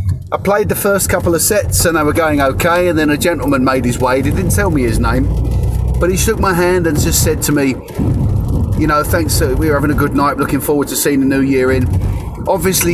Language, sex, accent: English, male, British